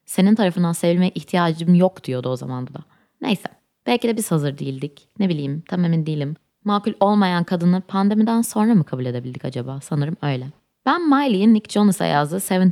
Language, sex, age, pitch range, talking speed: Turkish, female, 20-39, 150-195 Hz, 170 wpm